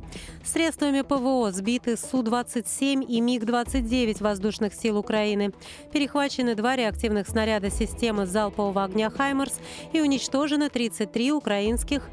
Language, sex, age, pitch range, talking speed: Russian, female, 30-49, 215-270 Hz, 105 wpm